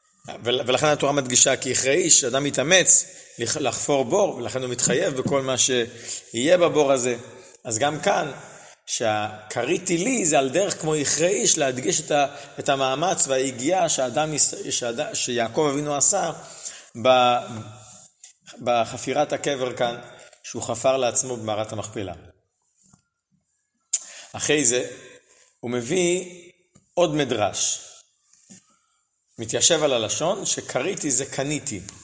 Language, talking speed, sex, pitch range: Hebrew, 105 wpm, male, 120-160 Hz